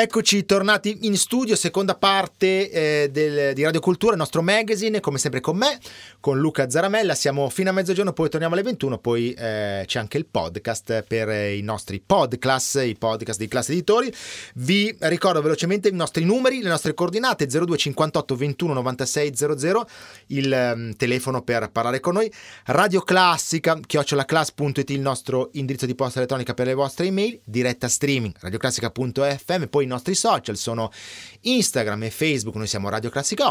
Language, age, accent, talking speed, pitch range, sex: Italian, 30-49, native, 160 wpm, 115-175 Hz, male